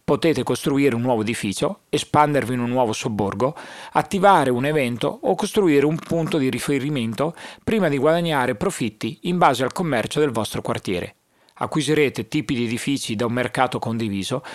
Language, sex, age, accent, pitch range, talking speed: Italian, male, 40-59, native, 120-165 Hz, 155 wpm